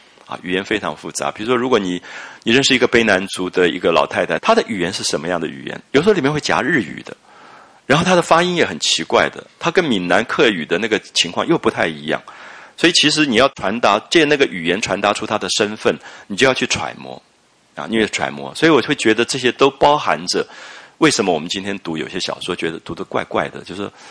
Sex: male